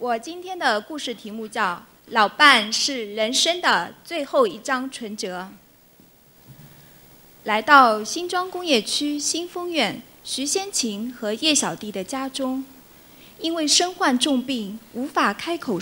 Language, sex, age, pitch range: Chinese, female, 20-39, 215-295 Hz